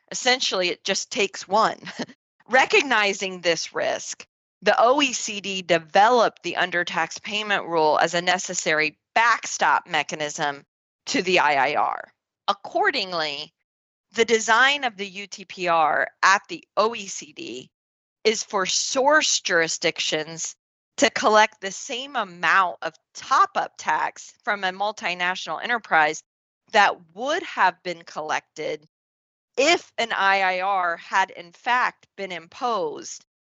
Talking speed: 110 wpm